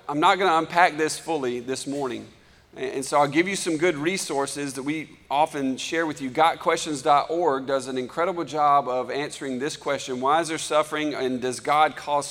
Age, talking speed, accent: 40-59, 195 wpm, American